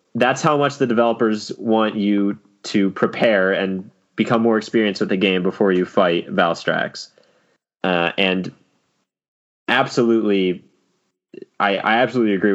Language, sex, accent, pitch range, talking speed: English, male, American, 95-115 Hz, 130 wpm